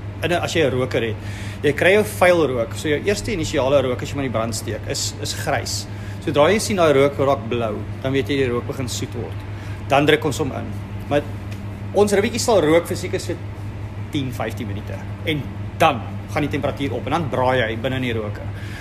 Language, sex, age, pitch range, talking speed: English, male, 30-49, 100-140 Hz, 220 wpm